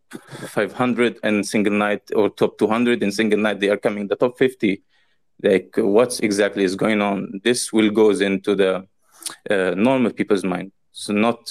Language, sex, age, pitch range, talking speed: English, male, 20-39, 100-110 Hz, 175 wpm